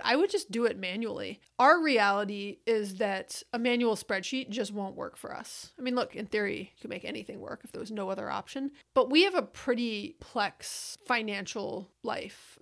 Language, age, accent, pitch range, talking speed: English, 30-49, American, 205-245 Hz, 200 wpm